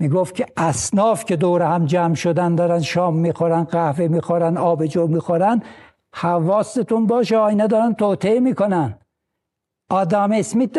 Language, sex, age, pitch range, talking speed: Persian, male, 60-79, 170-225 Hz, 135 wpm